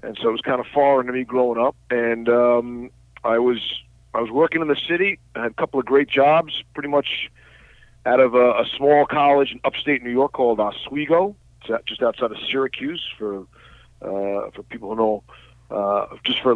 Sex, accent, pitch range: male, American, 120-145 Hz